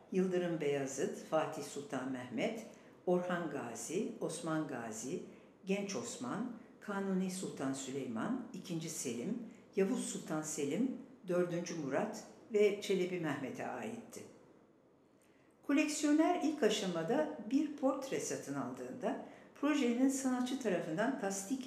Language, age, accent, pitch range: English, 60-79, Turkish, 160-240 Hz